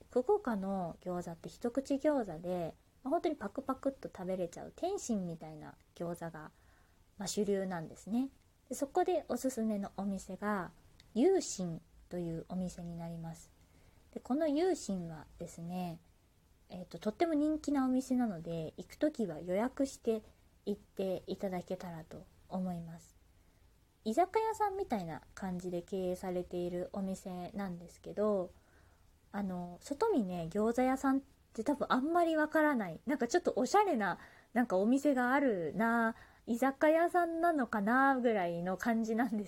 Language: Japanese